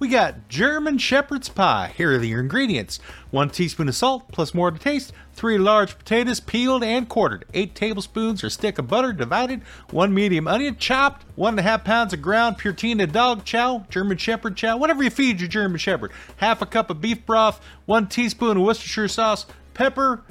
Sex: male